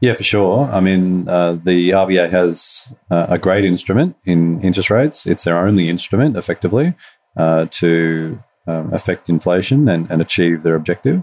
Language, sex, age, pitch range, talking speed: English, male, 30-49, 85-100 Hz, 165 wpm